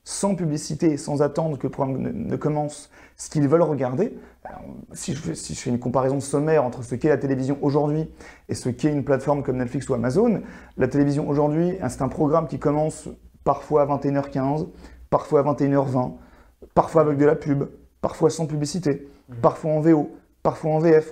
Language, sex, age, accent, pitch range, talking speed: French, male, 30-49, French, 135-160 Hz, 190 wpm